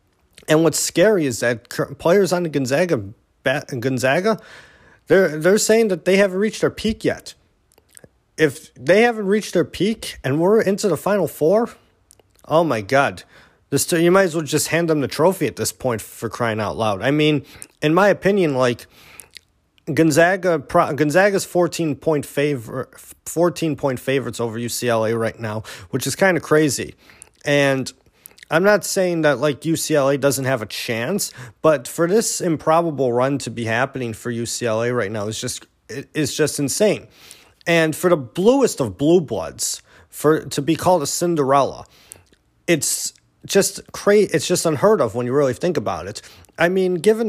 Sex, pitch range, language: male, 120-170 Hz, English